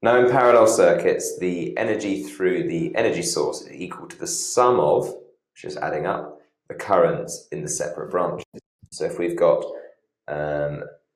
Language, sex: English, male